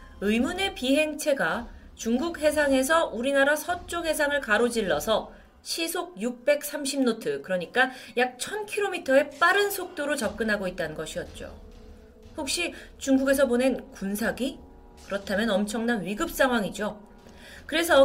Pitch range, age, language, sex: 215-285 Hz, 30-49, Korean, female